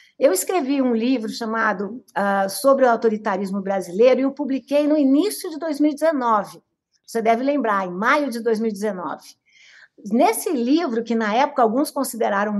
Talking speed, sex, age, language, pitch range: 150 wpm, female, 60-79, Portuguese, 215-285 Hz